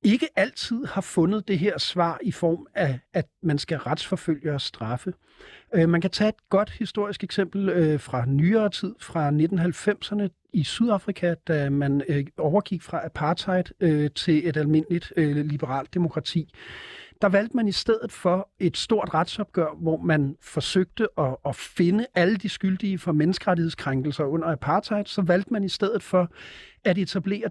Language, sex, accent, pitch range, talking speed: Danish, male, native, 155-195 Hz, 150 wpm